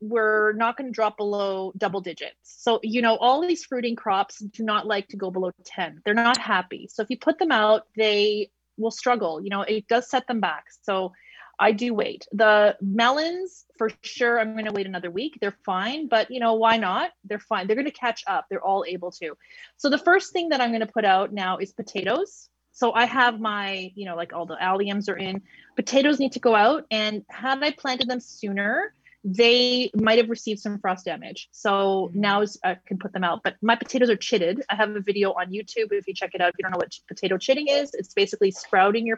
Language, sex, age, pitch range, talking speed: English, female, 30-49, 195-245 Hz, 230 wpm